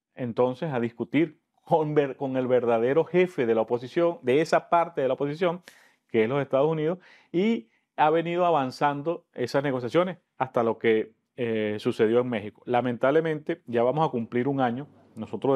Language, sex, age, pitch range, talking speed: English, male, 40-59, 120-155 Hz, 165 wpm